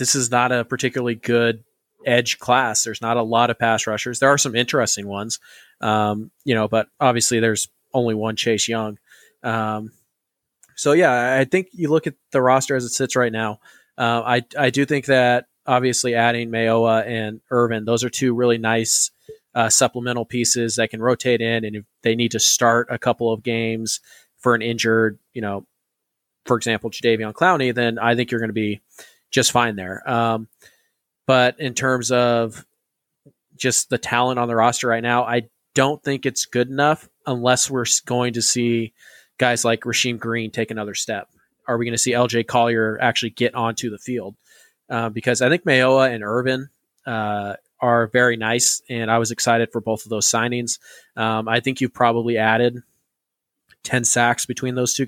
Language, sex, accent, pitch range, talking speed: English, male, American, 115-125 Hz, 185 wpm